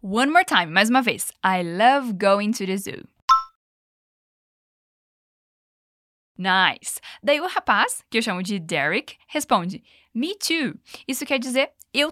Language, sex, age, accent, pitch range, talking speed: Portuguese, female, 10-29, Brazilian, 205-285 Hz, 140 wpm